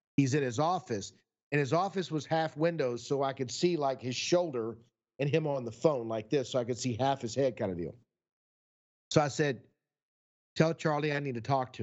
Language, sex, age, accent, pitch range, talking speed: English, male, 50-69, American, 120-150 Hz, 225 wpm